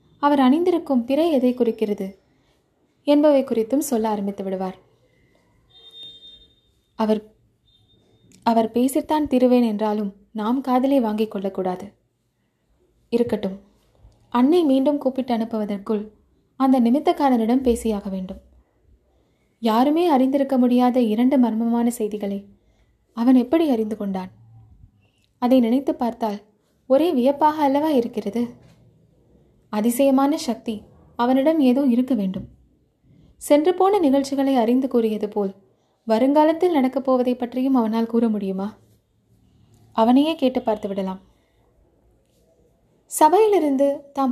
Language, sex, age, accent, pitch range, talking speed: Tamil, female, 20-39, native, 215-275 Hz, 95 wpm